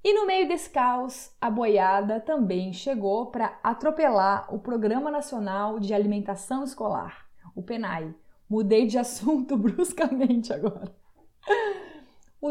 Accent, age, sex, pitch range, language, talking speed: Brazilian, 20-39, female, 205-260 Hz, Portuguese, 120 wpm